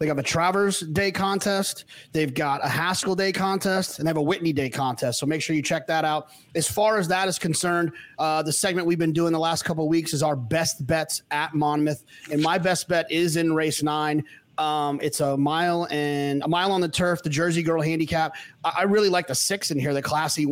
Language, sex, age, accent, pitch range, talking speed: English, male, 30-49, American, 150-180 Hz, 235 wpm